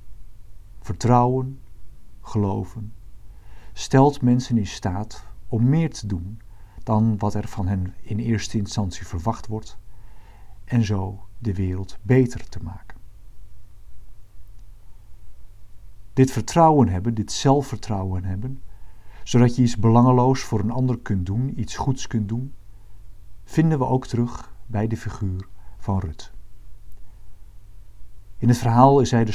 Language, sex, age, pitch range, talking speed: Dutch, male, 50-69, 100-120 Hz, 125 wpm